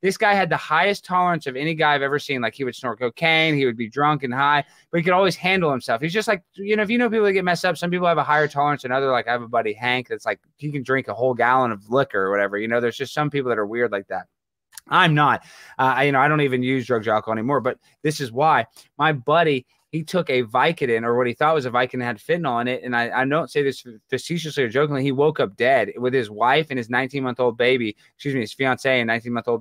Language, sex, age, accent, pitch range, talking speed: English, male, 20-39, American, 130-185 Hz, 280 wpm